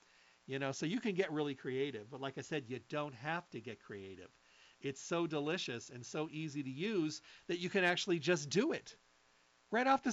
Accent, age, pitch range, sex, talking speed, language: American, 50-69, 120-165 Hz, male, 215 wpm, English